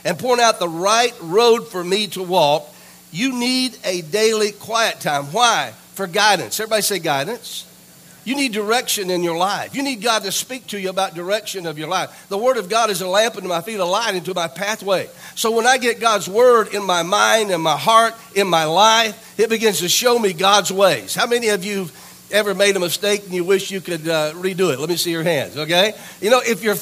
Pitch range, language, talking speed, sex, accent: 180-225 Hz, English, 235 wpm, male, American